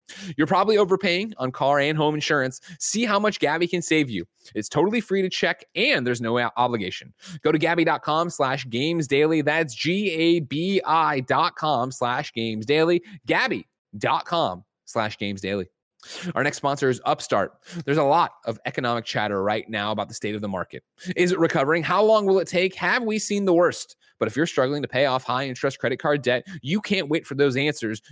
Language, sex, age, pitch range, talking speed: English, male, 20-39, 130-175 Hz, 190 wpm